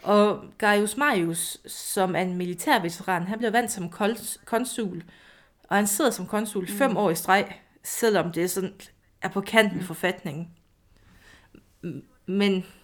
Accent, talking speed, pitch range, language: native, 145 wpm, 180-225 Hz, Danish